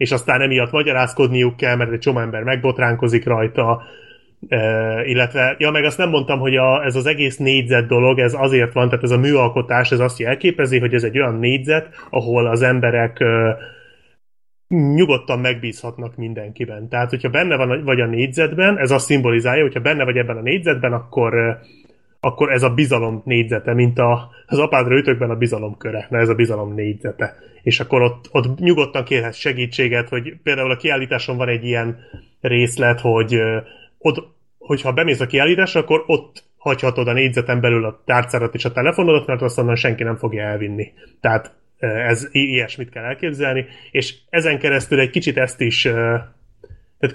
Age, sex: 30-49, male